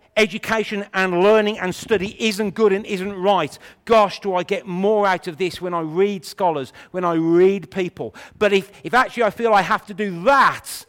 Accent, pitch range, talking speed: British, 150-200 Hz, 205 wpm